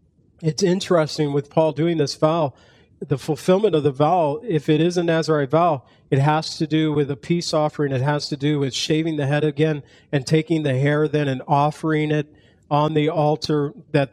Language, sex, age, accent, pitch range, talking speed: English, male, 40-59, American, 135-155 Hz, 200 wpm